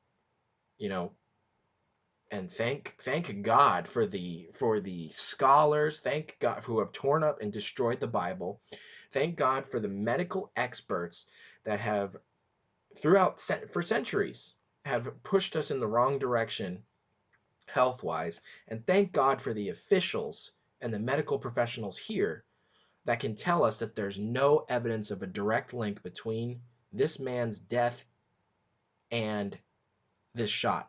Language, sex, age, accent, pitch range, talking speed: English, male, 20-39, American, 105-150 Hz, 140 wpm